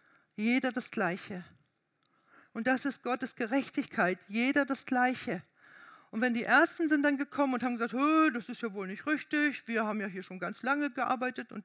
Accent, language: German, German